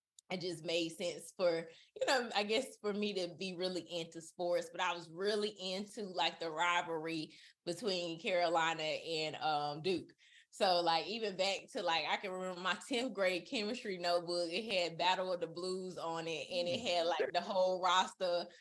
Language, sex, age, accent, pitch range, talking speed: English, female, 20-39, American, 165-195 Hz, 185 wpm